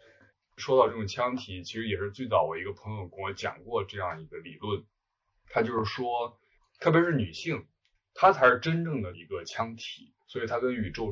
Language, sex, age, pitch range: Chinese, male, 20-39, 100-145 Hz